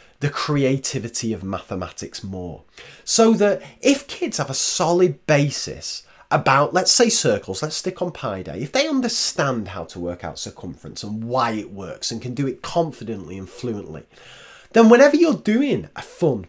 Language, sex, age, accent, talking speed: English, male, 30-49, British, 170 wpm